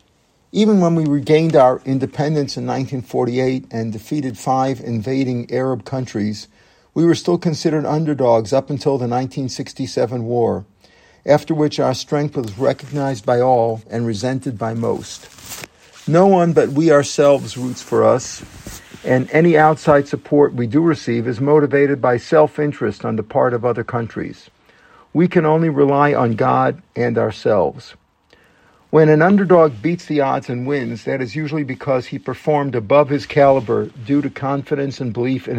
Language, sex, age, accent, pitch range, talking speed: English, male, 50-69, American, 125-150 Hz, 155 wpm